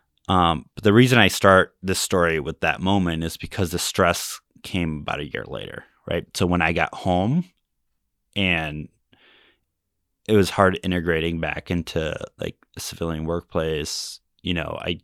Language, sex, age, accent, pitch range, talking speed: English, male, 20-39, American, 80-95 Hz, 160 wpm